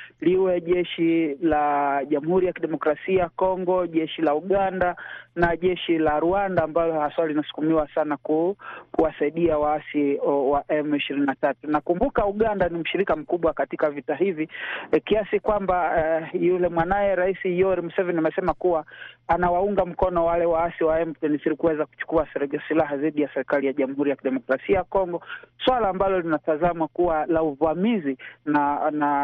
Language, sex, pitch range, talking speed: Swahili, male, 150-190 Hz, 145 wpm